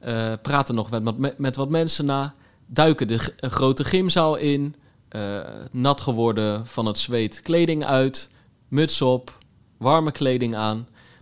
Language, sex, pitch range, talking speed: Dutch, male, 115-150 Hz, 155 wpm